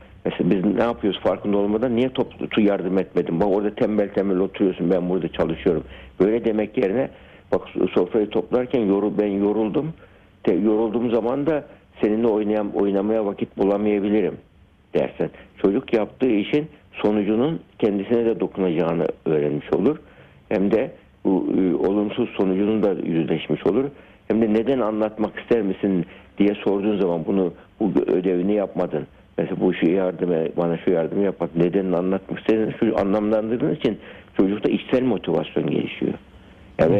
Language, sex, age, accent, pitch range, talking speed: Turkish, male, 60-79, native, 95-115 Hz, 140 wpm